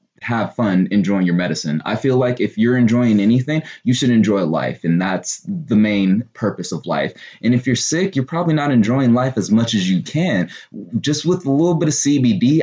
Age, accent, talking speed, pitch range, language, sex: 20-39, American, 210 wpm, 95-125 Hz, English, male